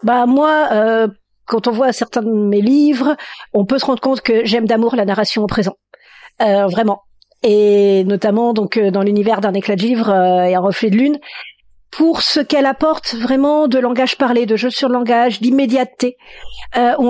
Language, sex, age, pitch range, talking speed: French, female, 40-59, 225-290 Hz, 190 wpm